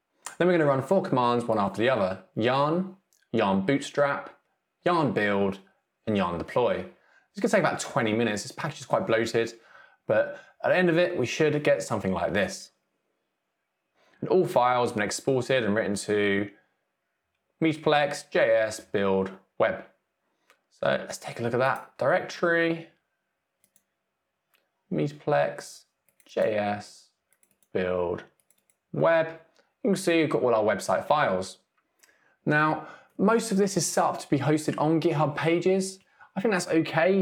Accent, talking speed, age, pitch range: British, 145 wpm, 20-39, 110-155 Hz